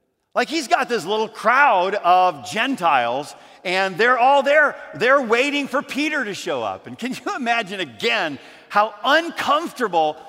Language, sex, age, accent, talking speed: English, male, 50-69, American, 150 wpm